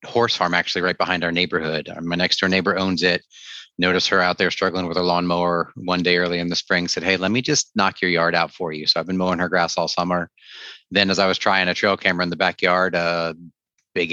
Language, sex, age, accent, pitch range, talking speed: English, male, 30-49, American, 85-100 Hz, 250 wpm